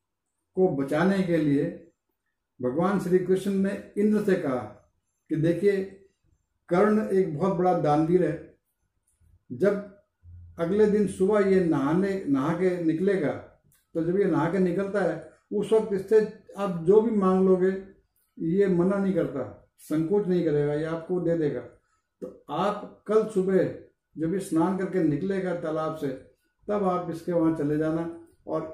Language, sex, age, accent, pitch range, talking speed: Hindi, male, 50-69, native, 140-185 Hz, 150 wpm